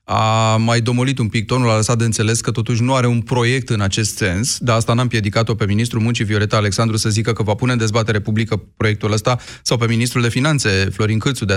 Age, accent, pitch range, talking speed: 30-49, native, 105-125 Hz, 240 wpm